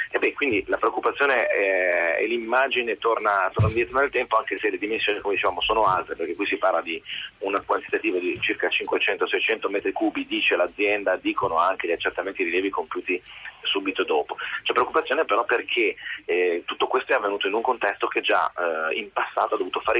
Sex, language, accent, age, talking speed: male, Italian, native, 30-49, 180 wpm